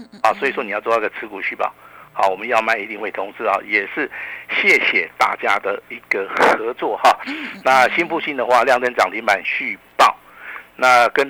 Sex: male